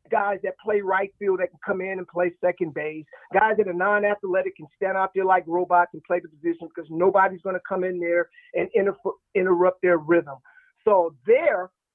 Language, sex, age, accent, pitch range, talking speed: English, male, 40-59, American, 180-260 Hz, 200 wpm